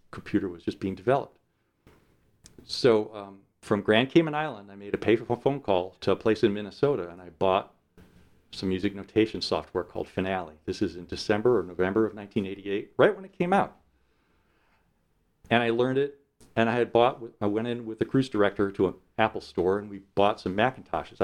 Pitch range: 95-120 Hz